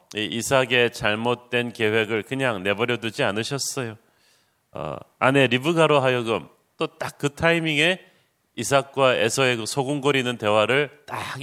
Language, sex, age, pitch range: Korean, male, 30-49, 125-150 Hz